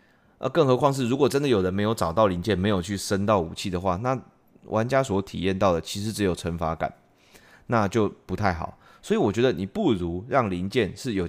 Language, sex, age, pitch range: Chinese, male, 20-39, 95-125 Hz